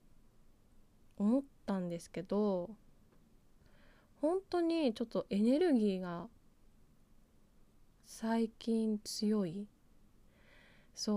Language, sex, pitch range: Japanese, female, 180-230 Hz